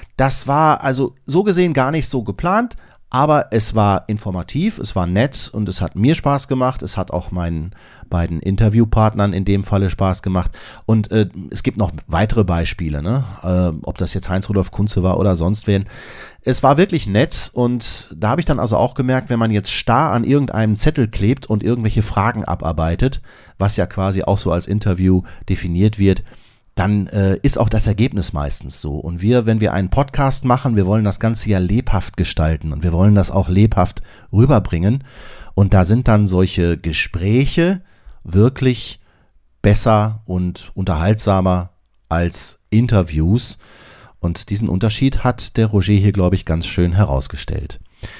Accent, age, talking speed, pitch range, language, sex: German, 40-59, 170 wpm, 95-120 Hz, German, male